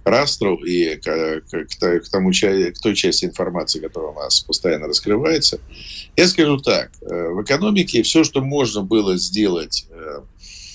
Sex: male